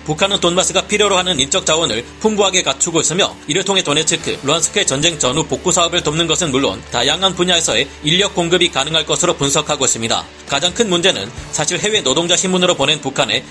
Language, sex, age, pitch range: Korean, male, 40-59, 145-185 Hz